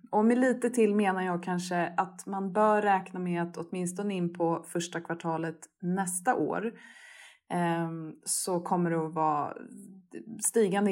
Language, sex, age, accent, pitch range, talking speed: Swedish, female, 20-39, native, 175-225 Hz, 145 wpm